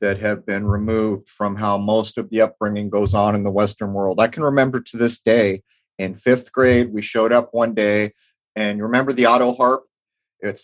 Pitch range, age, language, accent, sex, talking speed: 105-130 Hz, 30-49, English, American, male, 210 wpm